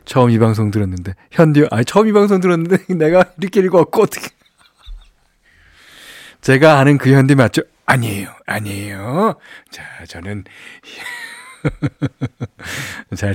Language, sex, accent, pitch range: Korean, male, native, 105-155 Hz